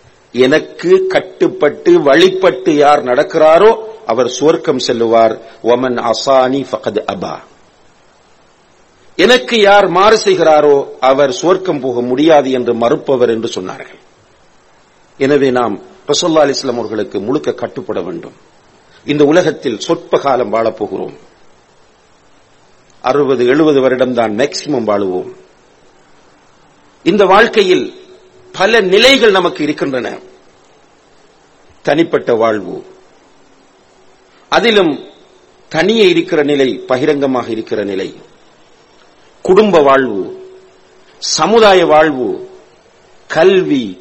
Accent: Indian